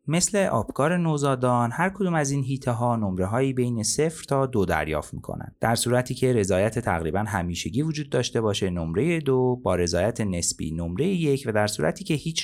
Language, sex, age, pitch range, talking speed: Persian, male, 30-49, 95-135 Hz, 185 wpm